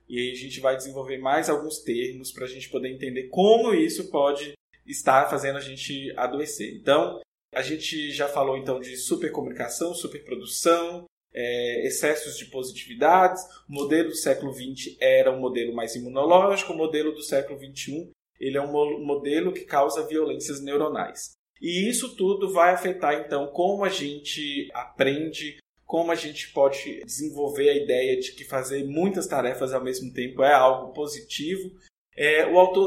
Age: 20-39